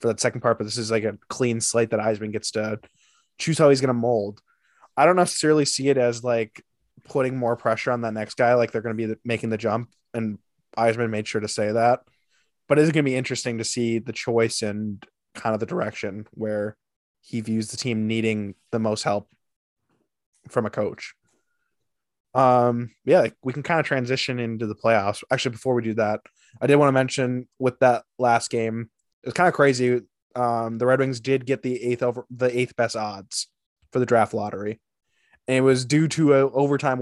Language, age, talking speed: English, 20-39, 210 wpm